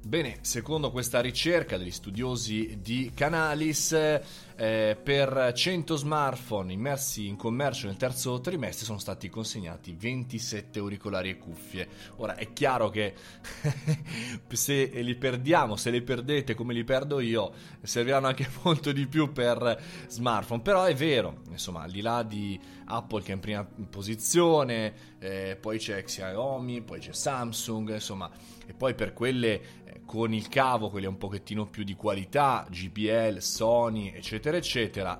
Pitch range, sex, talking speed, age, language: 100-130 Hz, male, 145 wpm, 20-39, Italian